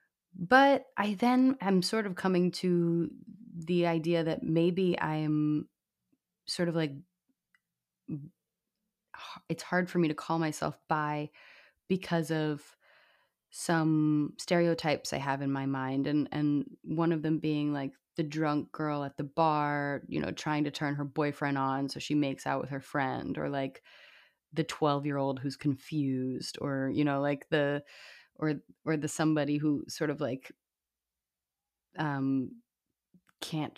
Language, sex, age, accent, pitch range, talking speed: English, female, 20-39, American, 145-185 Hz, 150 wpm